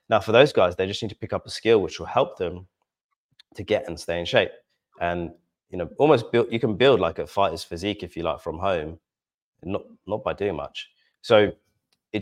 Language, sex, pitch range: English, male, 90-105 Hz